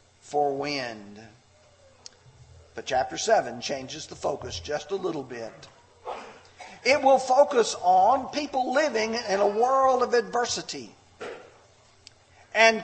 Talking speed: 110 wpm